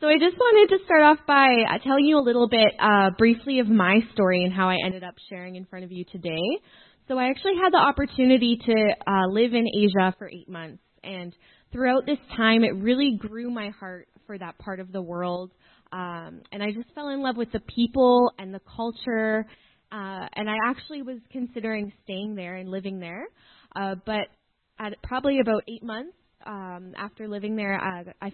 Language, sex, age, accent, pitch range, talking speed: English, female, 20-39, American, 185-240 Hz, 200 wpm